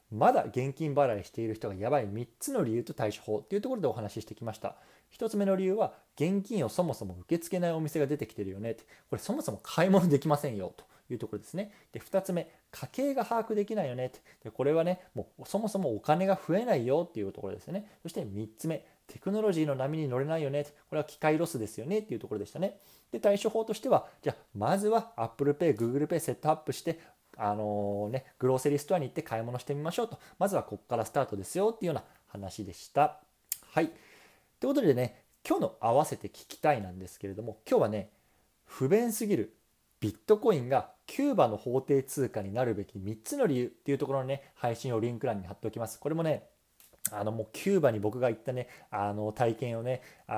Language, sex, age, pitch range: Japanese, male, 20-39, 110-175 Hz